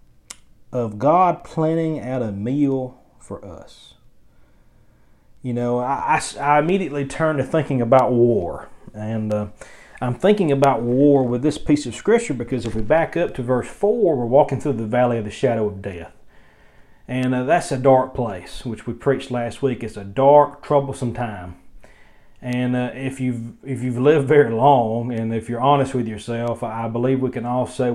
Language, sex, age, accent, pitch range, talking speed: English, male, 40-59, American, 120-140 Hz, 180 wpm